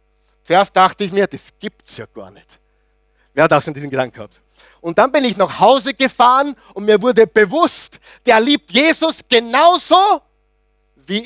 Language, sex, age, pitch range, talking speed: German, male, 50-69, 150-225 Hz, 170 wpm